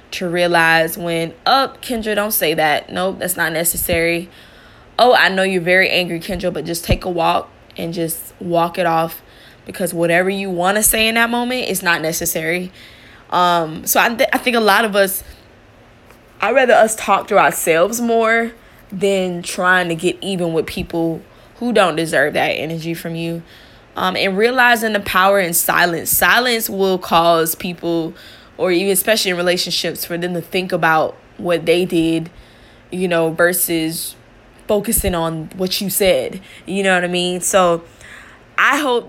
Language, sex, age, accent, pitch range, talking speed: English, female, 10-29, American, 165-195 Hz, 170 wpm